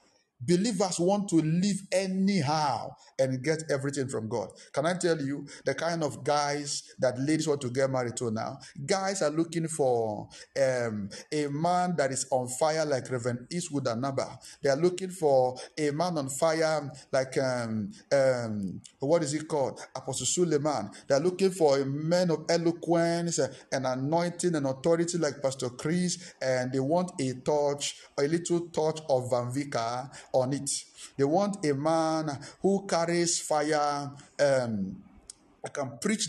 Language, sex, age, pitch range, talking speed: English, male, 50-69, 135-170 Hz, 155 wpm